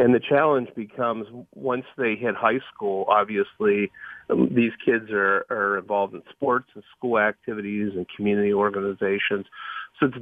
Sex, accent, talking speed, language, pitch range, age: male, American, 145 wpm, English, 105-125 Hz, 40-59